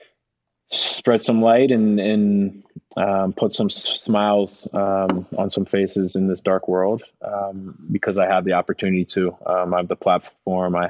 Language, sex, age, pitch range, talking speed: English, male, 20-39, 95-105 Hz, 165 wpm